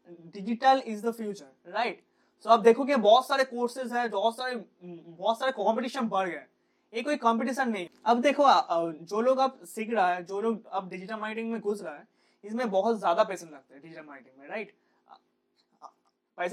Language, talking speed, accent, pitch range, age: Hindi, 65 wpm, native, 195-245 Hz, 20-39